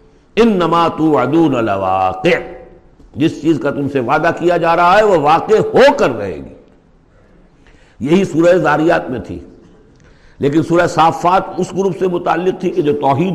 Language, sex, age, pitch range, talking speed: Urdu, male, 60-79, 115-165 Hz, 160 wpm